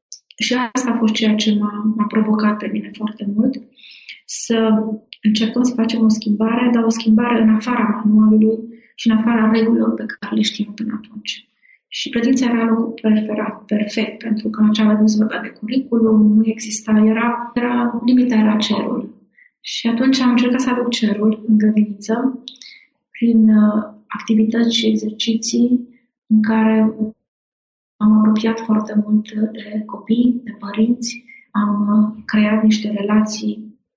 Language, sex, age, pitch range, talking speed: Romanian, female, 30-49, 215-240 Hz, 145 wpm